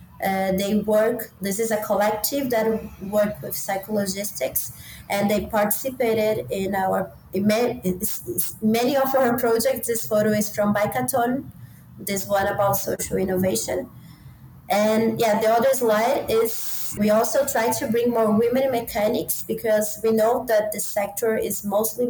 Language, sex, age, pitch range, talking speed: English, female, 20-39, 195-230 Hz, 150 wpm